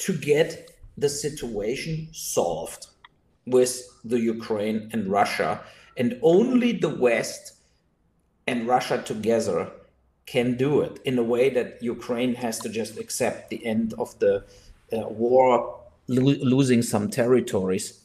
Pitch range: 110-145 Hz